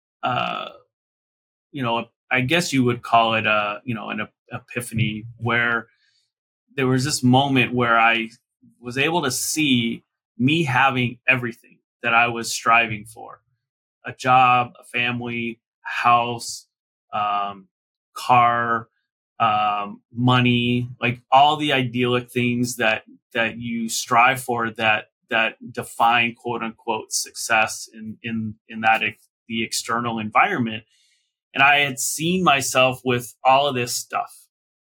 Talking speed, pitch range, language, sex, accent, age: 130 wpm, 115-130 Hz, English, male, American, 30-49